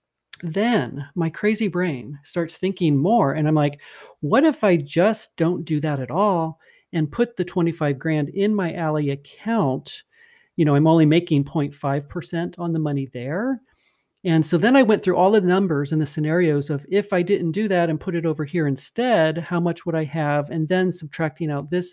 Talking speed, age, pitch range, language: 195 wpm, 40-59, 145-185 Hz, English